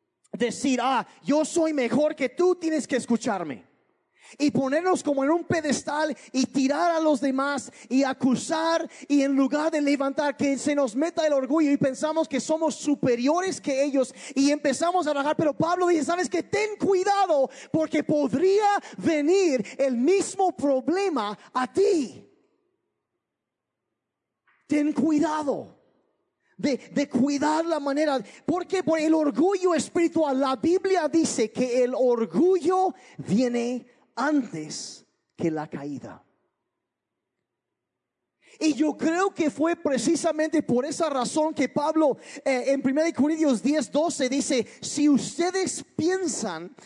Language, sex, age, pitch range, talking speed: Spanish, male, 30-49, 260-325 Hz, 130 wpm